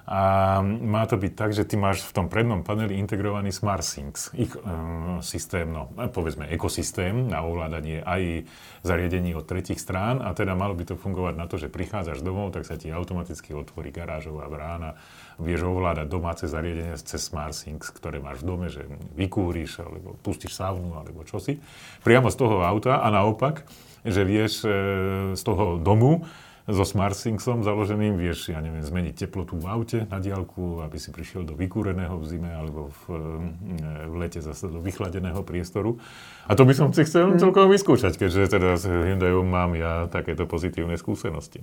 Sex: male